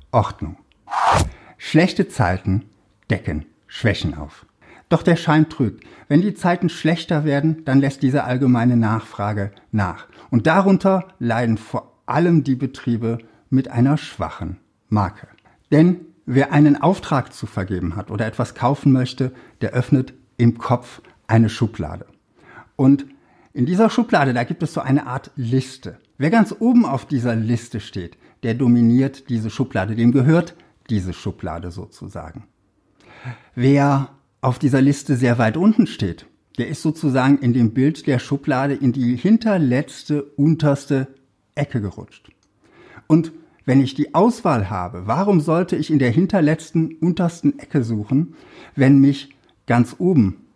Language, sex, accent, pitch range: German, male, German, 115-150 Hz